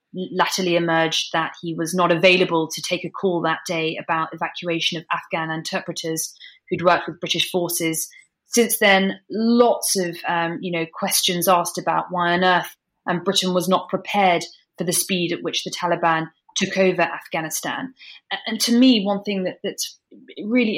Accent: British